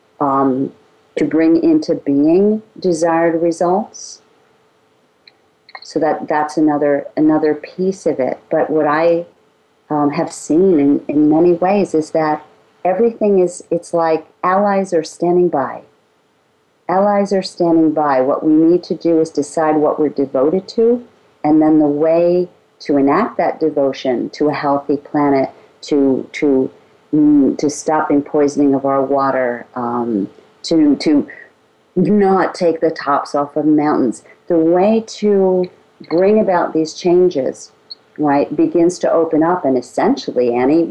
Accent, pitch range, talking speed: American, 150-195 Hz, 140 wpm